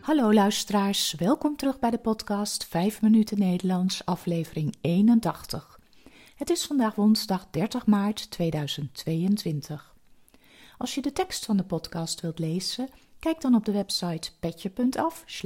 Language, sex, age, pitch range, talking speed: Dutch, female, 40-59, 165-235 Hz, 130 wpm